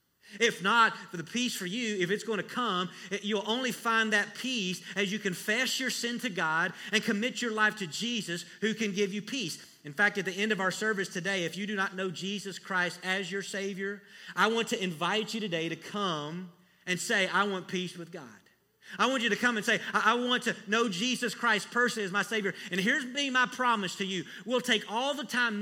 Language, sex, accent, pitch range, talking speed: English, male, American, 185-230 Hz, 230 wpm